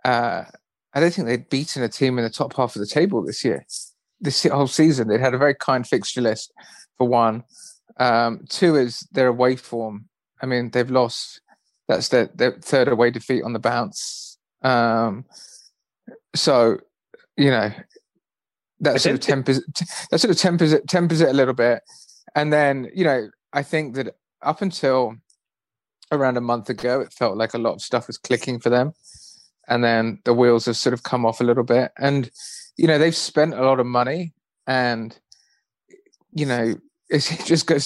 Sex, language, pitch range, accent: male, English, 120-145 Hz, British